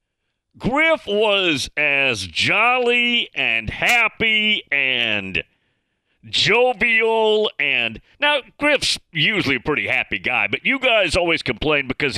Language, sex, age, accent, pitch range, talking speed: English, male, 50-69, American, 140-215 Hz, 110 wpm